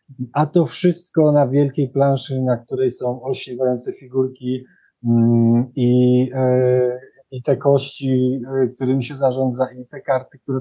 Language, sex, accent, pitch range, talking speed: Polish, male, native, 120-140 Hz, 125 wpm